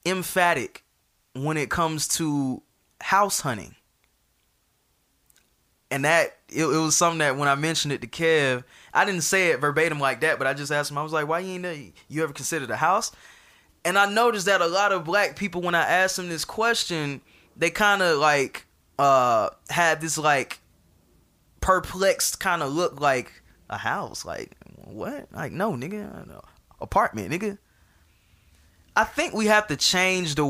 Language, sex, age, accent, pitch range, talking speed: English, male, 20-39, American, 140-180 Hz, 170 wpm